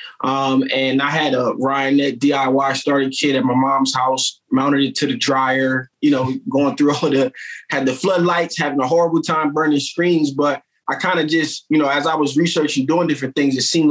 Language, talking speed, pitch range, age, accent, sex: English, 210 wpm, 135-160 Hz, 20-39, American, male